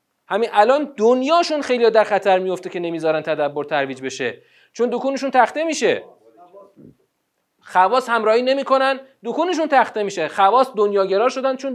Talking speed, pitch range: 135 wpm, 200-285 Hz